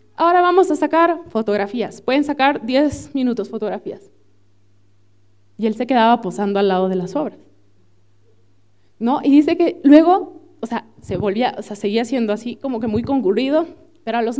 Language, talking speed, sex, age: Spanish, 170 wpm, female, 20-39